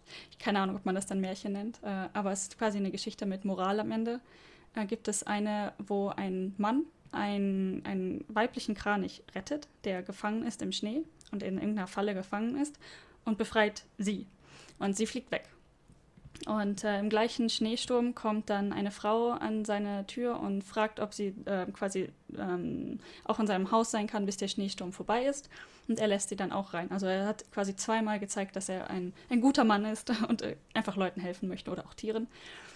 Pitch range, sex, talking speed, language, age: 195-225 Hz, female, 200 wpm, German, 10-29